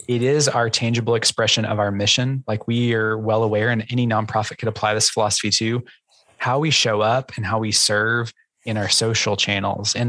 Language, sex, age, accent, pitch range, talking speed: English, male, 20-39, American, 110-125 Hz, 200 wpm